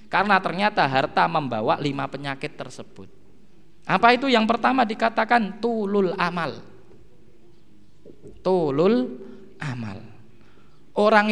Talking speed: 90 wpm